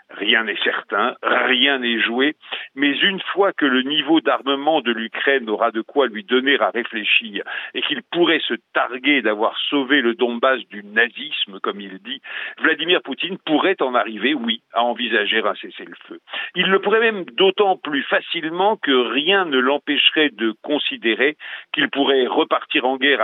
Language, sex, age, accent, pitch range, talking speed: French, male, 50-69, French, 125-190 Hz, 165 wpm